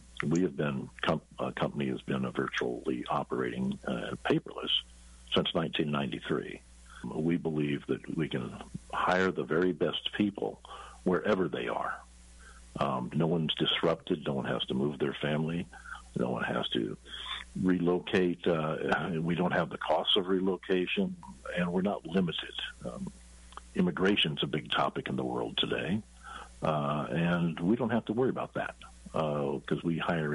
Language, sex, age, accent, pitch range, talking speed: English, male, 50-69, American, 70-90 Hz, 155 wpm